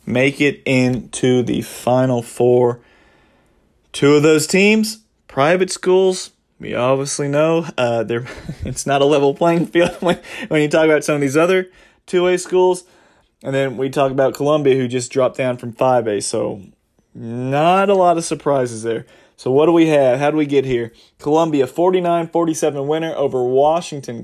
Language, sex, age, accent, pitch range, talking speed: English, male, 30-49, American, 130-175 Hz, 170 wpm